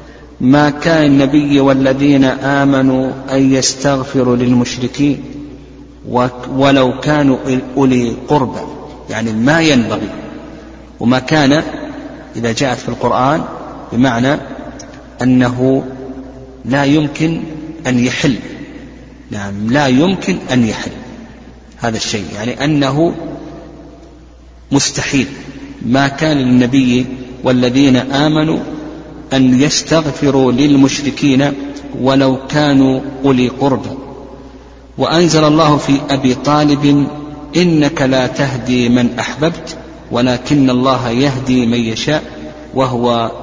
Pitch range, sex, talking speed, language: 120-140 Hz, male, 90 wpm, Arabic